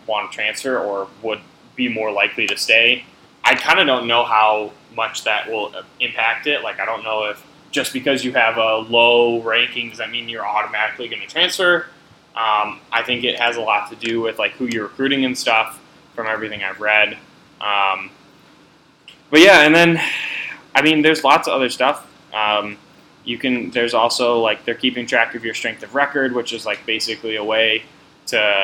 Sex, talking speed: male, 195 wpm